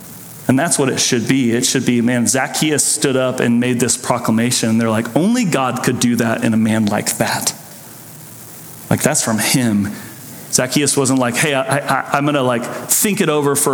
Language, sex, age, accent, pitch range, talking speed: English, male, 30-49, American, 120-150 Hz, 210 wpm